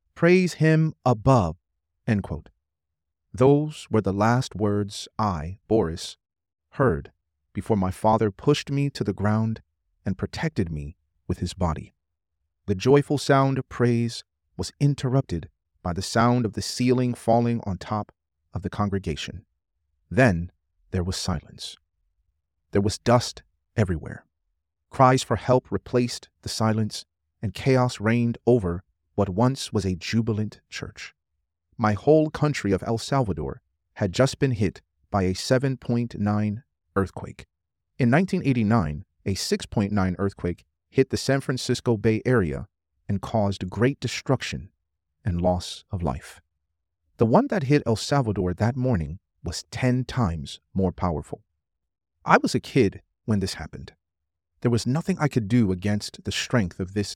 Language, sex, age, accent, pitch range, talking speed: English, male, 40-59, American, 80-120 Hz, 140 wpm